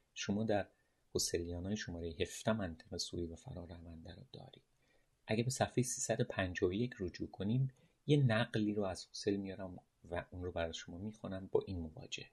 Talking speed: 165 wpm